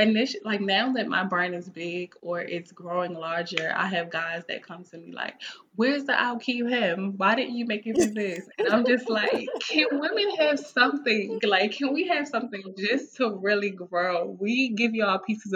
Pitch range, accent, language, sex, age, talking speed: 170-215 Hz, American, English, female, 20-39, 210 wpm